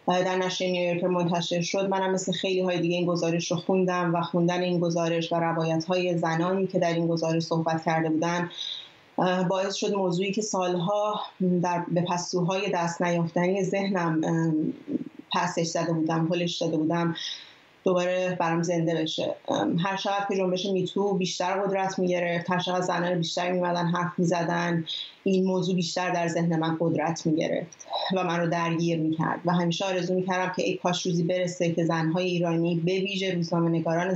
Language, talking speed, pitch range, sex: Persian, 170 wpm, 170-185 Hz, female